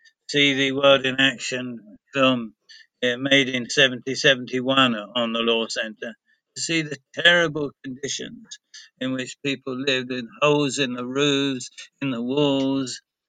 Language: English